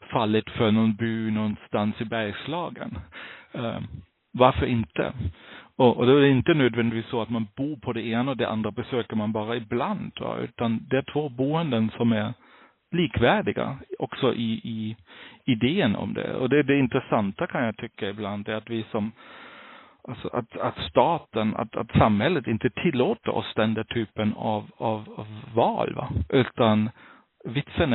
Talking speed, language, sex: 165 wpm, Swedish, male